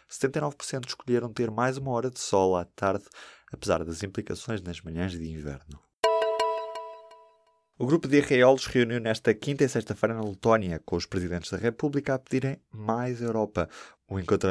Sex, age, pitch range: male, 20-39, 90-115 Hz